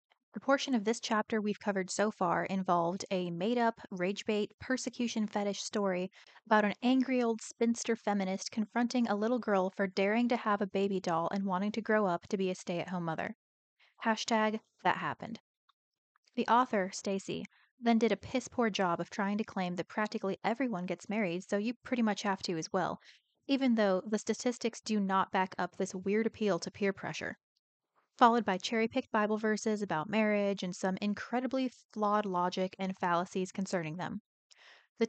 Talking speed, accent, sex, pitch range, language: 175 wpm, American, female, 190-225 Hz, English